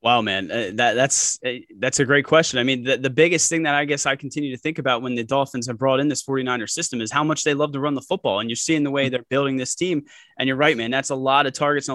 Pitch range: 135-155 Hz